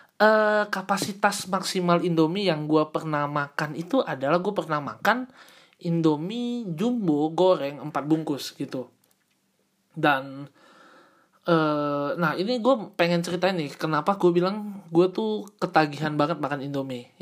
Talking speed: 125 wpm